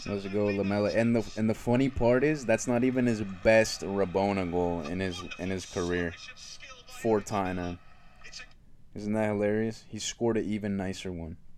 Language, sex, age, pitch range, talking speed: English, male, 20-39, 90-105 Hz, 170 wpm